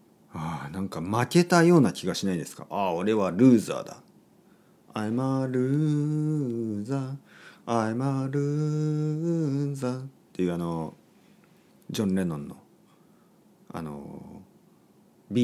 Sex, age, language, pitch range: male, 40-59, Japanese, 110-175 Hz